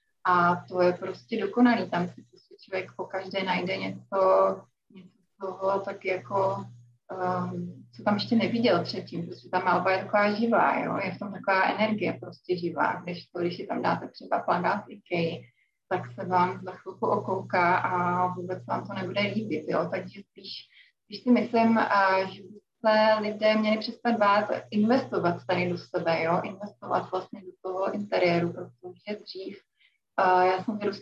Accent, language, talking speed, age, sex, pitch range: native, Czech, 165 wpm, 20-39, female, 180-210 Hz